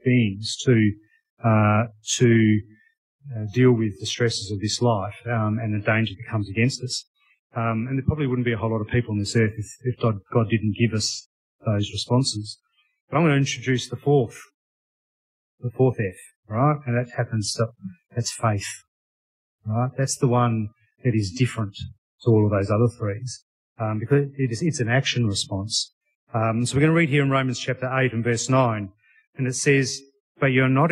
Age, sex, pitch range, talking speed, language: 30-49, male, 110-135 Hz, 195 wpm, English